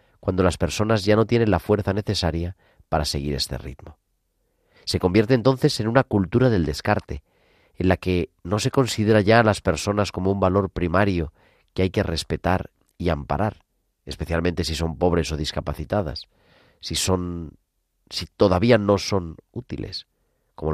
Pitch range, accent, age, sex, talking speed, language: 85-110 Hz, Spanish, 40-59, male, 160 wpm, Spanish